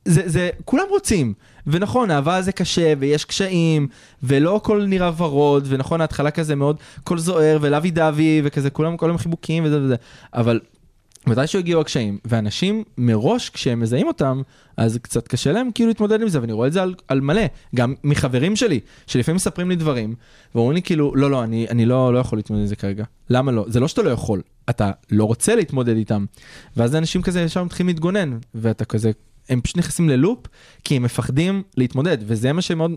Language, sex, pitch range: Hebrew, male, 120-170 Hz